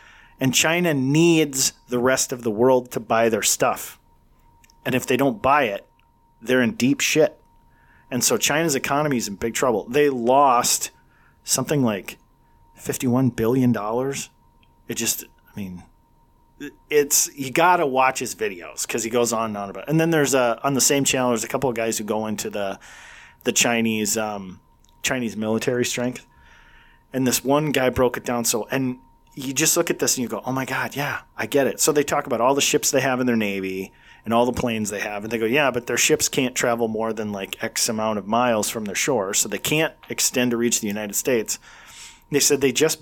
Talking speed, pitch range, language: 210 wpm, 115-140 Hz, English